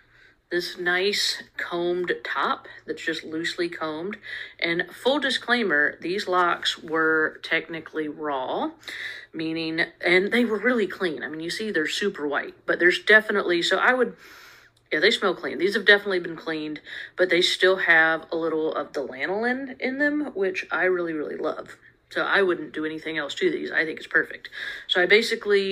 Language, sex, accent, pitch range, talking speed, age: English, female, American, 165-210 Hz, 175 wpm, 40-59